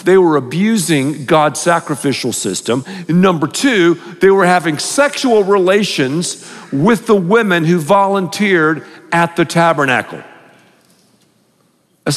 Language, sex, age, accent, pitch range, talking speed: English, male, 50-69, American, 160-205 Hz, 115 wpm